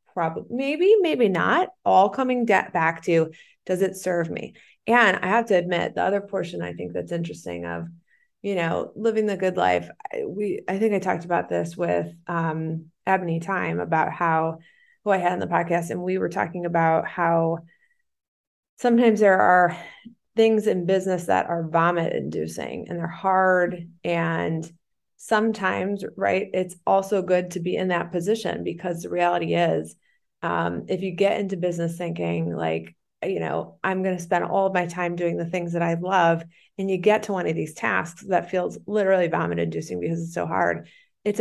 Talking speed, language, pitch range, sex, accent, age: 185 wpm, English, 165-205 Hz, female, American, 20-39